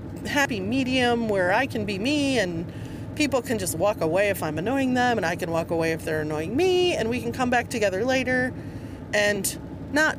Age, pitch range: 30-49, 165-215 Hz